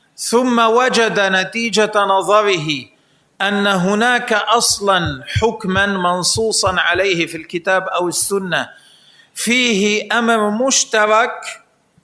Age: 40-59